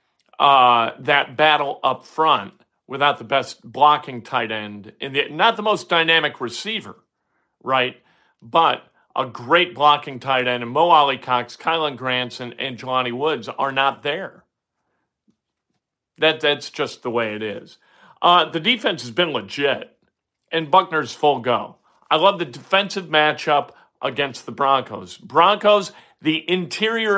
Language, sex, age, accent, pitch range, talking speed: English, male, 50-69, American, 135-180 Hz, 145 wpm